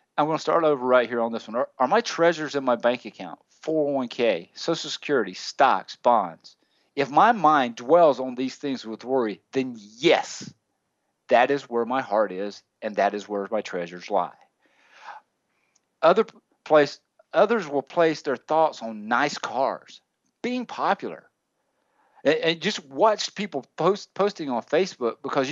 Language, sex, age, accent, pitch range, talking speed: English, male, 50-69, American, 120-185 Hz, 160 wpm